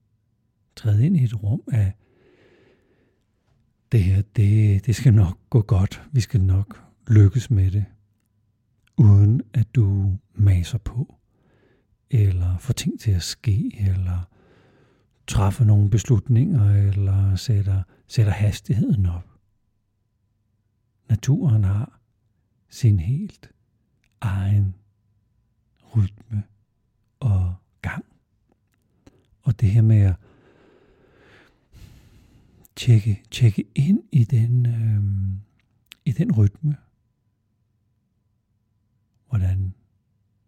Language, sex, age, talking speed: Danish, male, 60-79, 95 wpm